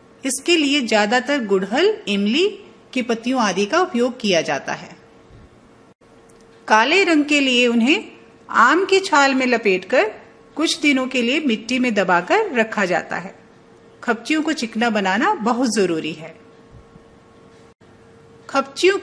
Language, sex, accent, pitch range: English, female, Indian, 220-315 Hz